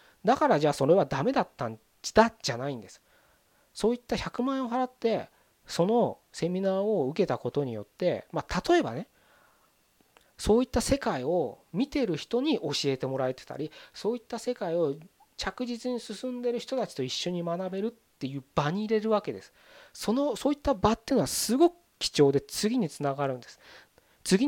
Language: Japanese